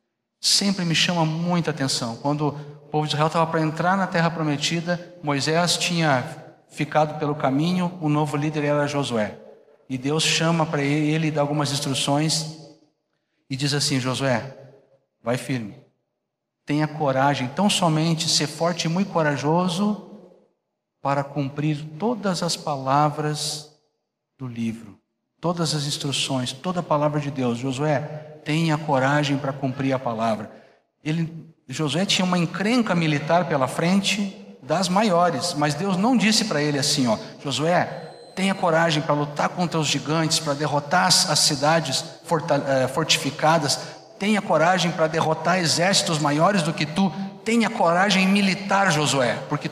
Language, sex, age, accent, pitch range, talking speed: Portuguese, male, 60-79, Brazilian, 145-175 Hz, 140 wpm